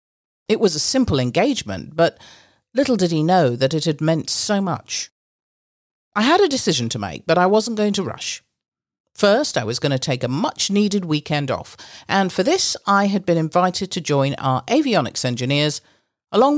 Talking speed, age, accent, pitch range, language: 185 wpm, 50-69, British, 130-210 Hz, English